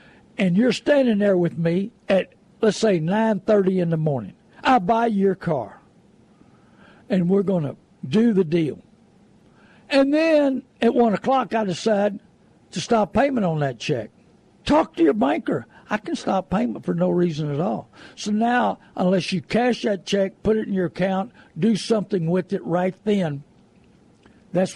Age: 60-79